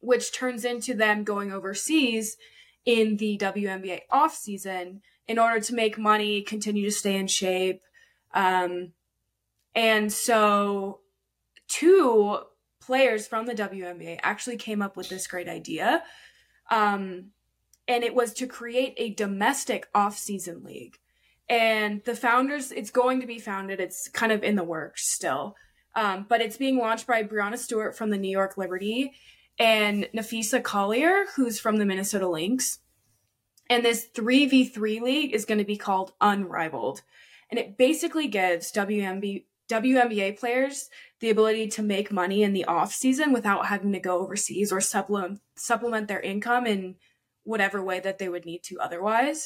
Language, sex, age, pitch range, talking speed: English, female, 20-39, 195-240 Hz, 155 wpm